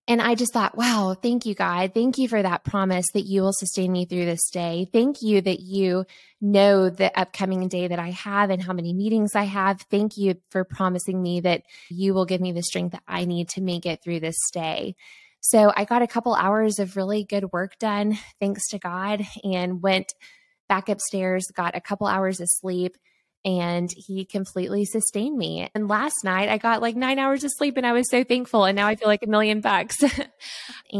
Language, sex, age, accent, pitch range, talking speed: English, female, 20-39, American, 180-210 Hz, 215 wpm